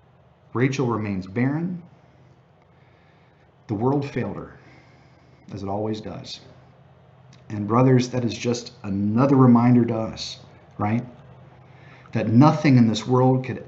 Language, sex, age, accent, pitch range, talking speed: English, male, 40-59, American, 120-145 Hz, 120 wpm